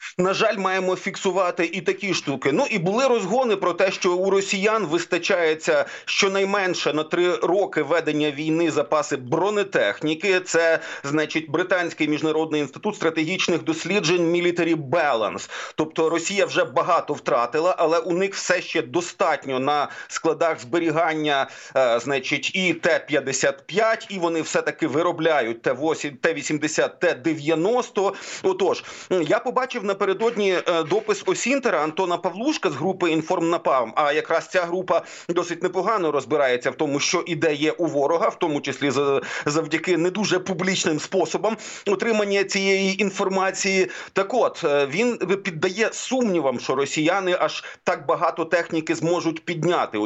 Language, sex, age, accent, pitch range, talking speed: Ukrainian, male, 40-59, native, 155-195 Hz, 125 wpm